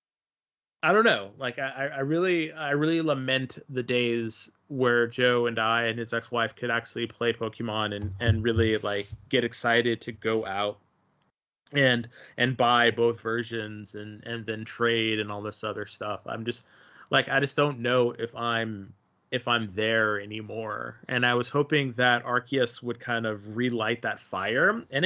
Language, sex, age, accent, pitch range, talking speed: English, male, 20-39, American, 110-135 Hz, 170 wpm